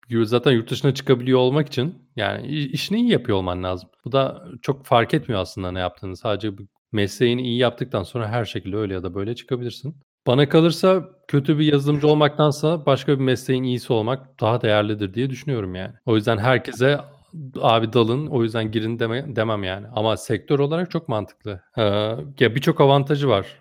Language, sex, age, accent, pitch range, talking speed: Turkish, male, 40-59, native, 105-135 Hz, 175 wpm